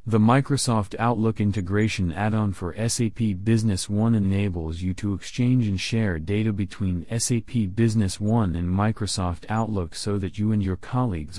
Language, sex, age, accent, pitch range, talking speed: English, male, 40-59, American, 95-115 Hz, 155 wpm